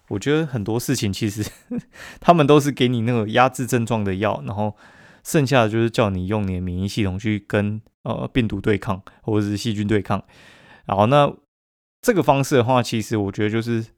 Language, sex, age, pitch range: Chinese, male, 20-39, 105-130 Hz